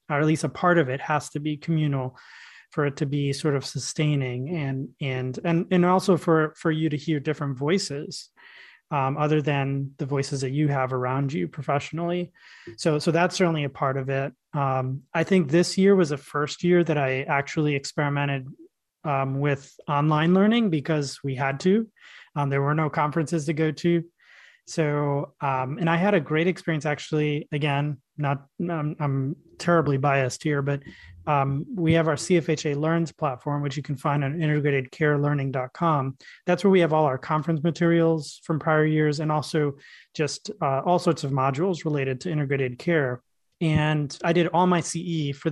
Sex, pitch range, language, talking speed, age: male, 140-165 Hz, English, 180 wpm, 20-39